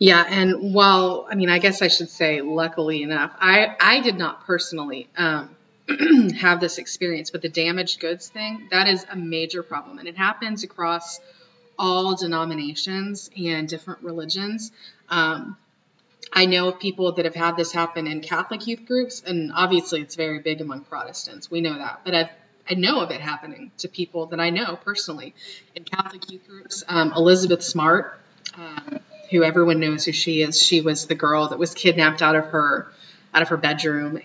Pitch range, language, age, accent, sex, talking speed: 160-190 Hz, English, 30-49, American, female, 185 wpm